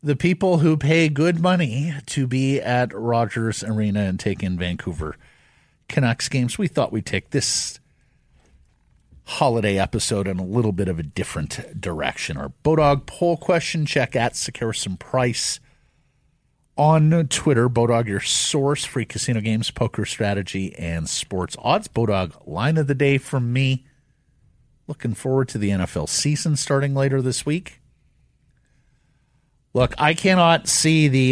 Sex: male